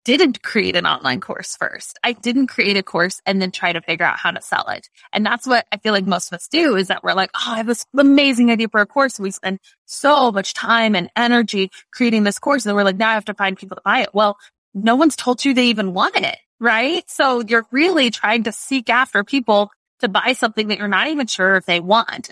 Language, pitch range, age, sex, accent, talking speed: English, 195-255 Hz, 20-39, female, American, 255 wpm